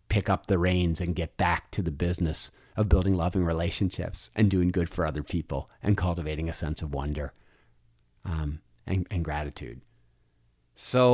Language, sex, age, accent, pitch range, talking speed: English, male, 40-59, American, 85-120 Hz, 165 wpm